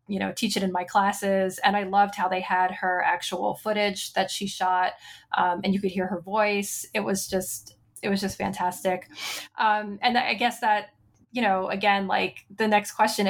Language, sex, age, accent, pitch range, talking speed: English, female, 20-39, American, 190-215 Hz, 205 wpm